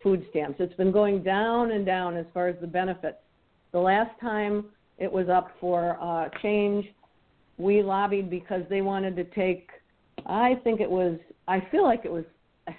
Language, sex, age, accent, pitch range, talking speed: English, female, 50-69, American, 175-195 Hz, 170 wpm